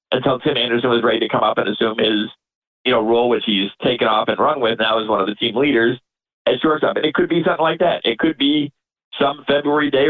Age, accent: 50-69, American